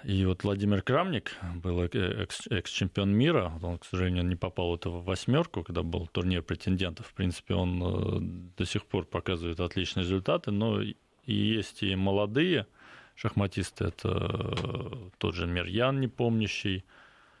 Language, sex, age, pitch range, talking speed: Russian, male, 20-39, 90-115 Hz, 135 wpm